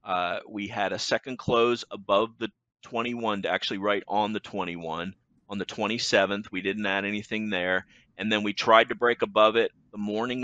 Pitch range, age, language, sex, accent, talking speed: 100-120 Hz, 30-49, English, male, American, 205 wpm